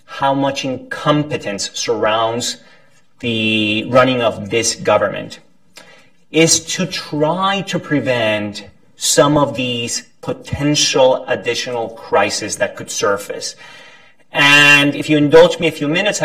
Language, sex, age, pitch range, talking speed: English, male, 30-49, 125-160 Hz, 115 wpm